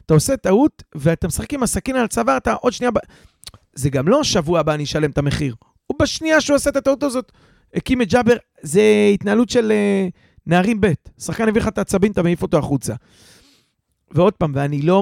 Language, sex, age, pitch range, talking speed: Hebrew, male, 40-59, 140-200 Hz, 200 wpm